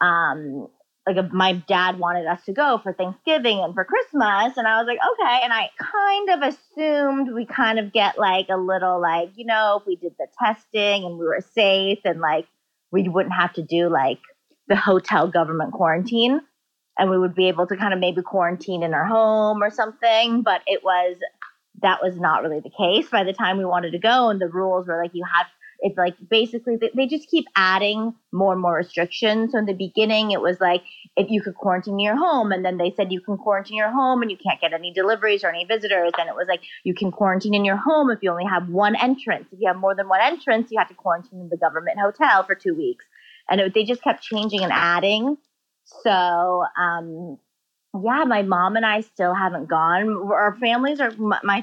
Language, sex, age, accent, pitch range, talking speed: English, female, 30-49, American, 180-225 Hz, 220 wpm